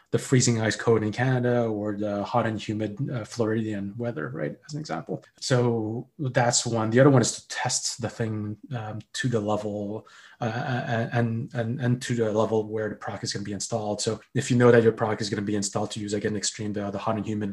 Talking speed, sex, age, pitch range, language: 240 wpm, male, 20-39, 110-130 Hz, English